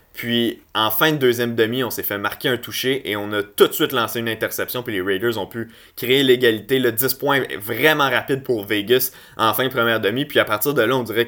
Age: 20-39